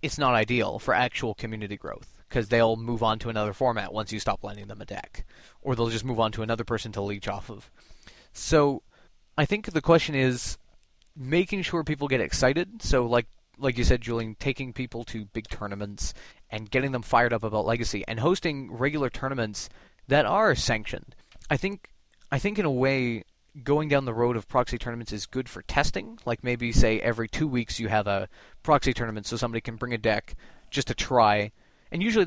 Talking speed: 205 wpm